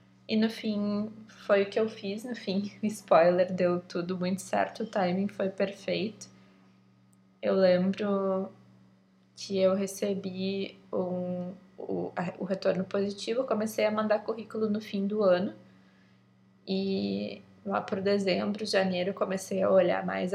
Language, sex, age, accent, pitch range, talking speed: Portuguese, female, 20-39, Brazilian, 180-205 Hz, 145 wpm